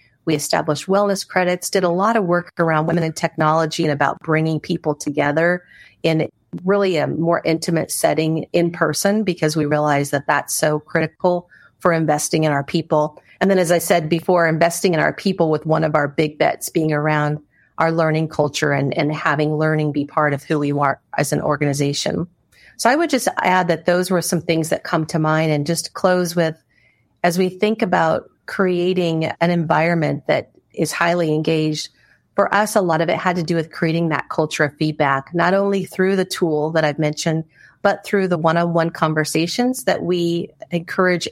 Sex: female